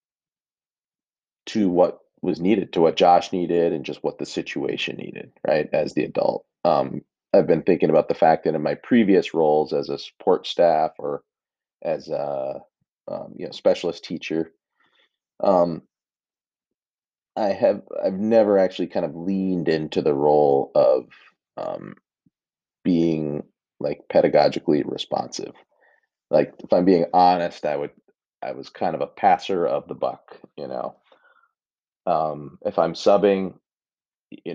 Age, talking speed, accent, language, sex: 30-49, 145 wpm, American, English, male